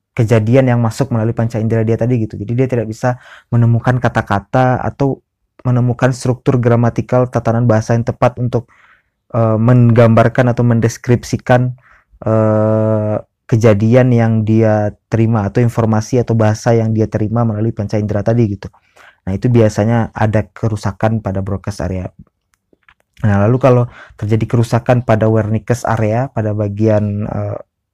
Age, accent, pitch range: 20-39, native, 105-120 Hz